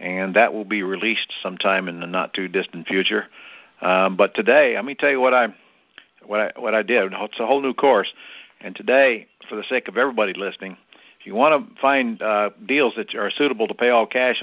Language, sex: English, male